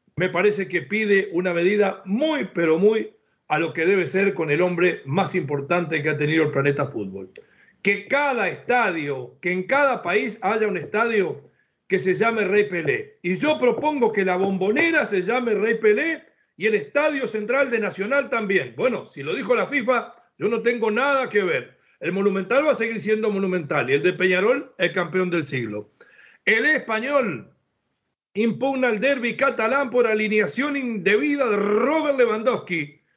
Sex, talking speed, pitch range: male, 175 wpm, 175-240 Hz